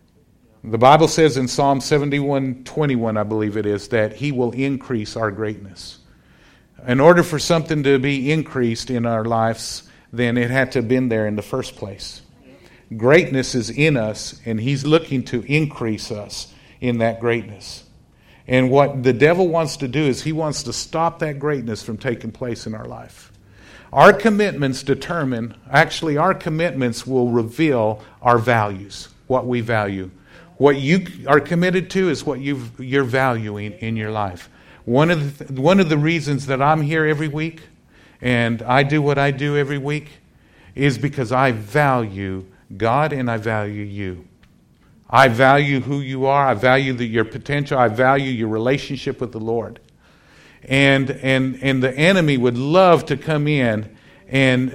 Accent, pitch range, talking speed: American, 115-145 Hz, 165 wpm